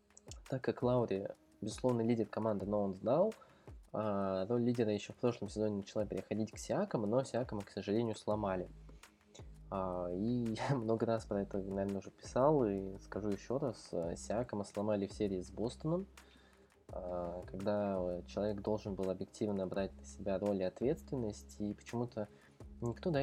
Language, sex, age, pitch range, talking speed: Russian, male, 20-39, 95-115 Hz, 145 wpm